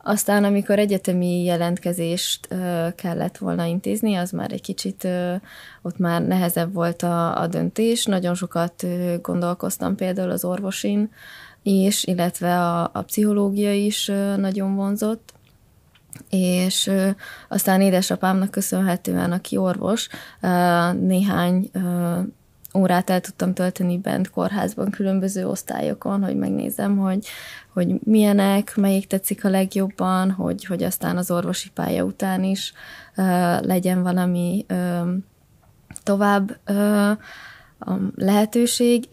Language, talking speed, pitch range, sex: Hungarian, 105 wpm, 180-200 Hz, female